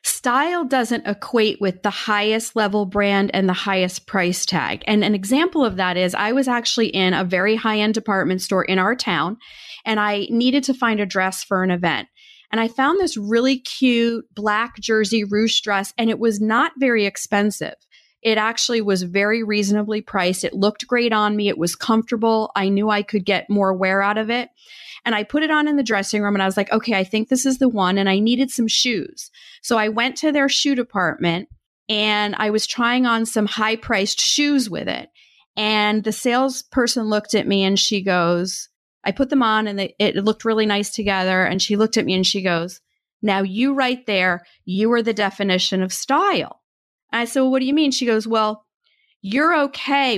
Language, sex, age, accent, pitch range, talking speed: English, female, 30-49, American, 195-240 Hz, 210 wpm